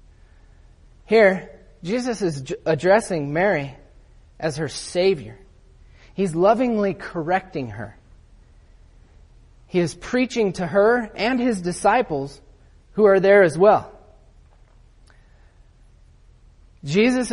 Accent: American